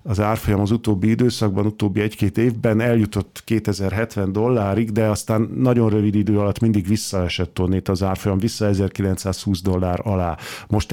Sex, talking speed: male, 150 wpm